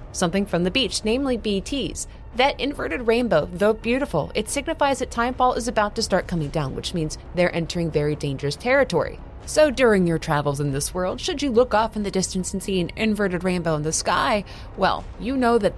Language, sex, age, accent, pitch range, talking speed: English, female, 20-39, American, 160-215 Hz, 205 wpm